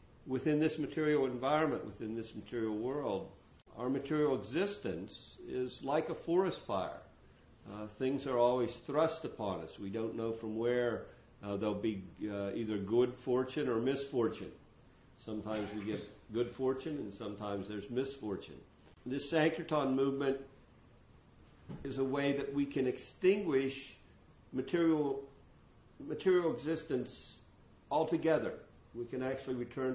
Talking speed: 130 wpm